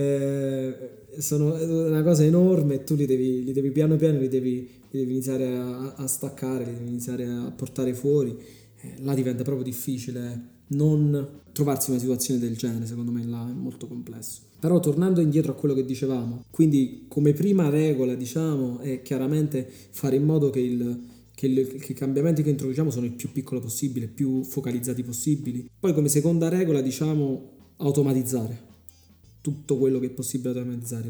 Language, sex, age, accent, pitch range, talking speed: Italian, male, 20-39, native, 125-145 Hz, 175 wpm